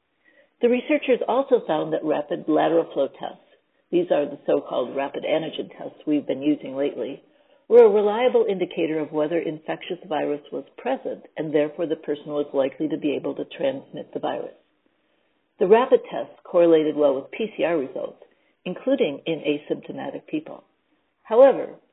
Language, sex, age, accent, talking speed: English, female, 60-79, American, 155 wpm